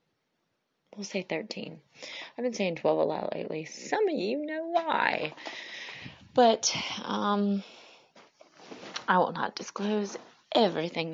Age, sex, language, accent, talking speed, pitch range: 30-49, female, English, American, 120 wpm, 165-235 Hz